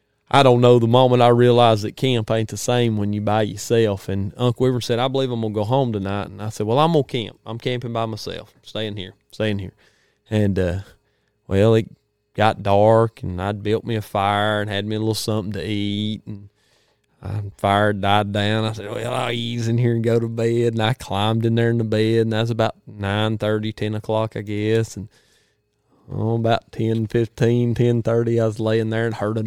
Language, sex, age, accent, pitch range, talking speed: English, male, 20-39, American, 105-120 Hz, 220 wpm